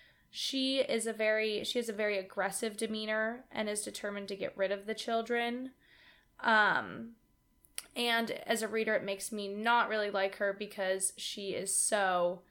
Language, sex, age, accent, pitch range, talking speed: English, female, 10-29, American, 200-230 Hz, 170 wpm